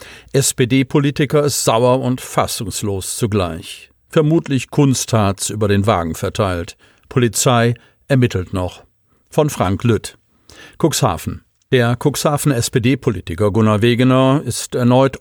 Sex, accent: male, German